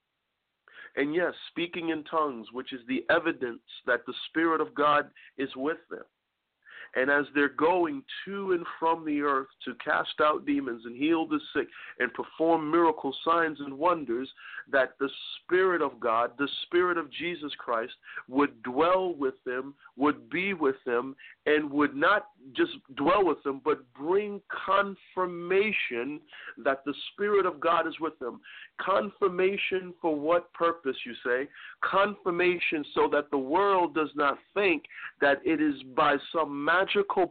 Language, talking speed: English, 155 wpm